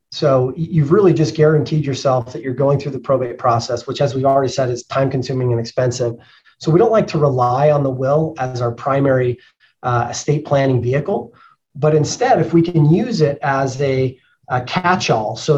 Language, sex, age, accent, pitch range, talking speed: English, male, 30-49, American, 130-160 Hz, 195 wpm